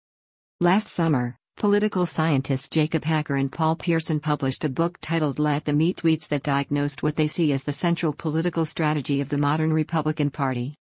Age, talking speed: 50-69, 175 wpm